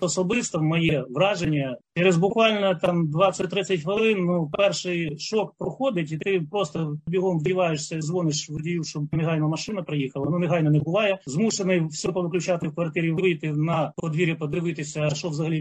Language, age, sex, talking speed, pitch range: Ukrainian, 30-49, male, 145 wpm, 150-175 Hz